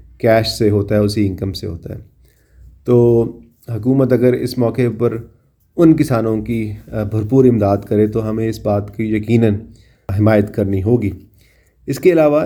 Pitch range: 105-125 Hz